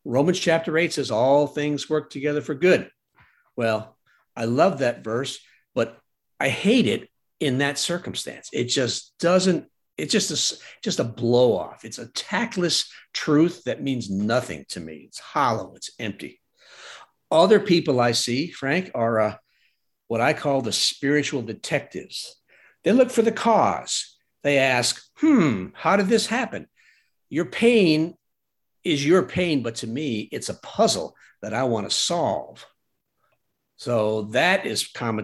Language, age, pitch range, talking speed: English, 60-79, 115-165 Hz, 150 wpm